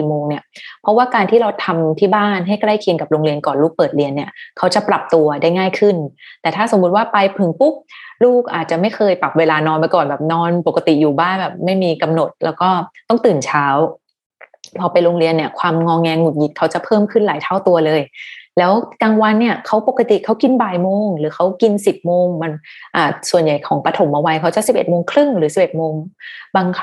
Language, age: Thai, 20-39